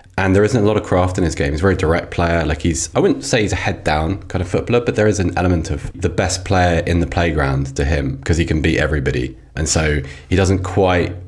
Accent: British